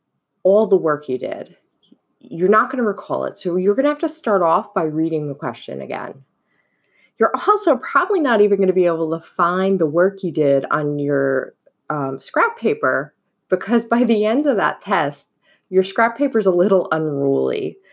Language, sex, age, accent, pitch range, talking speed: English, female, 20-39, American, 150-205 Hz, 195 wpm